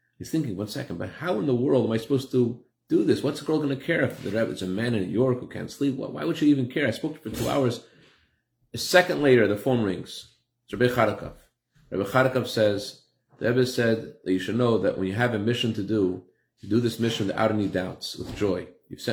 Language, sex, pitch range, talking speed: English, male, 105-135 Hz, 255 wpm